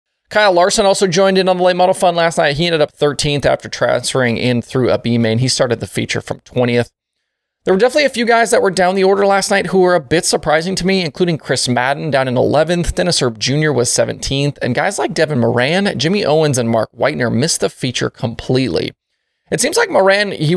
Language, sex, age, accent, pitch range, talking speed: English, male, 20-39, American, 120-180 Hz, 230 wpm